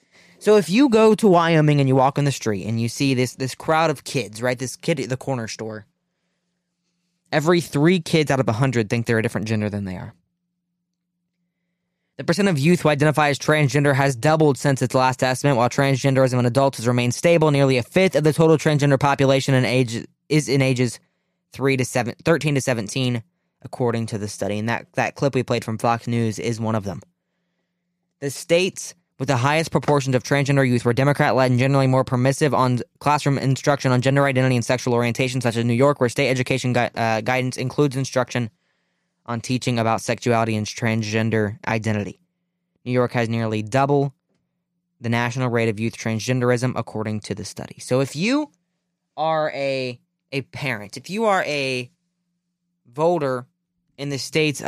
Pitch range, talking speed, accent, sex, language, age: 120-160 Hz, 190 wpm, American, male, English, 20-39